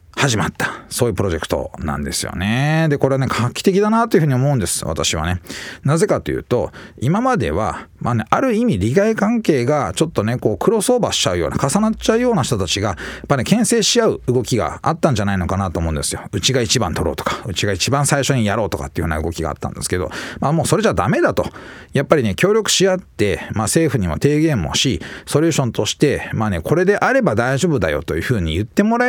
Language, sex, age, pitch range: Japanese, male, 40-59, 105-175 Hz